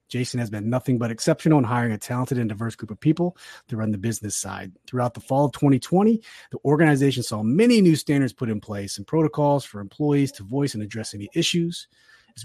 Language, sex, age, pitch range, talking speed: English, male, 30-49, 115-155 Hz, 215 wpm